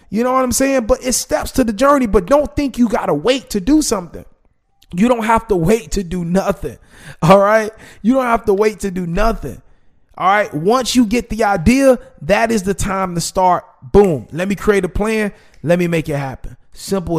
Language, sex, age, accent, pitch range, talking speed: English, male, 20-39, American, 145-185 Hz, 225 wpm